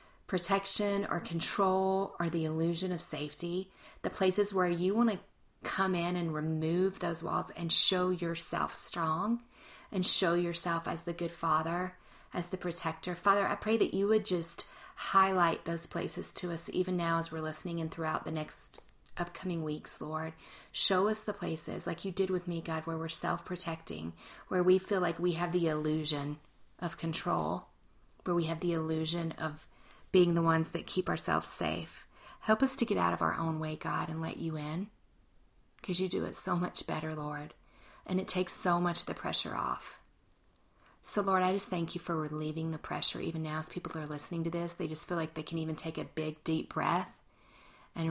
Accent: American